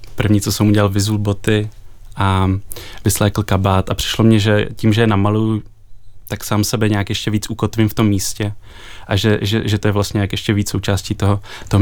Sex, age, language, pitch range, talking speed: male, 20-39, Czech, 100-105 Hz, 205 wpm